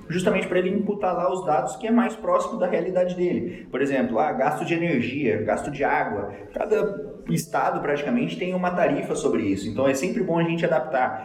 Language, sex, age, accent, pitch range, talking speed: Portuguese, male, 20-39, Brazilian, 125-180 Hz, 205 wpm